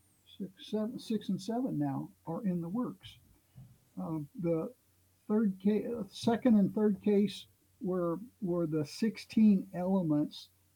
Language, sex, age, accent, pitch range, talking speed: English, male, 60-79, American, 150-190 Hz, 130 wpm